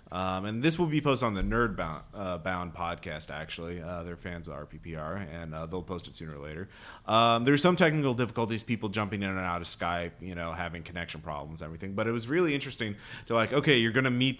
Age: 30-49